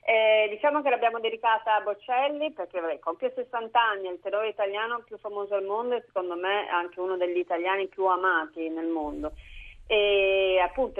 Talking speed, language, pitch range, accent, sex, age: 180 wpm, Italian, 165-215 Hz, native, female, 30-49